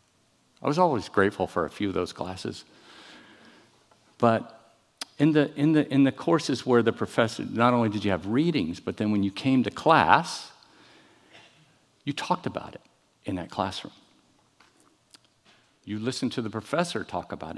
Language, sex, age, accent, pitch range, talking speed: English, male, 50-69, American, 110-155 Hz, 165 wpm